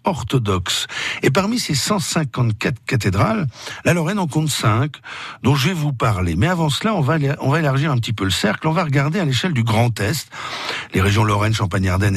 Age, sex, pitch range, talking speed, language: 60-79, male, 100-140 Hz, 200 wpm, French